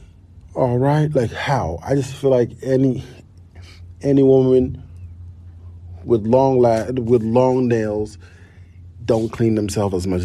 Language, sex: English, male